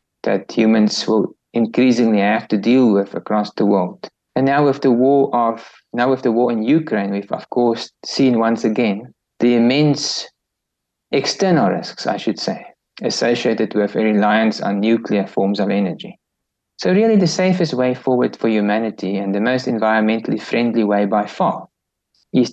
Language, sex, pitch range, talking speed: English, male, 105-125 Hz, 160 wpm